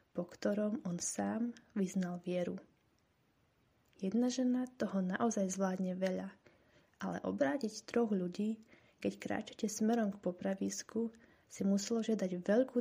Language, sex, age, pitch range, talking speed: Slovak, female, 20-39, 190-235 Hz, 115 wpm